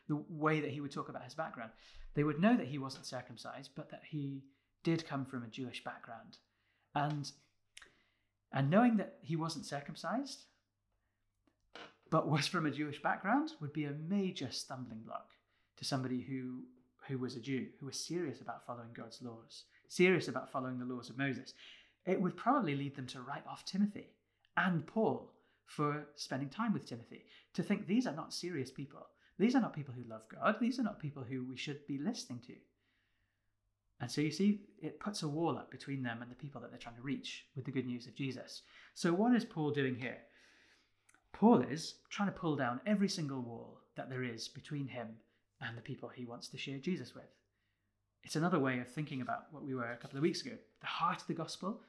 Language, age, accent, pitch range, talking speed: English, 30-49, British, 125-160 Hz, 205 wpm